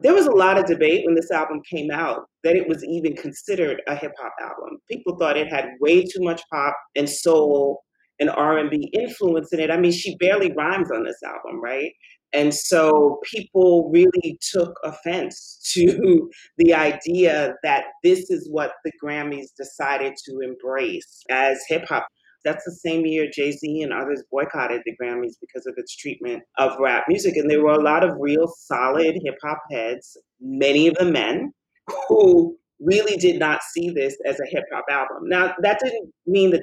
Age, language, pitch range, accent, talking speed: 30-49, English, 150-225 Hz, American, 185 wpm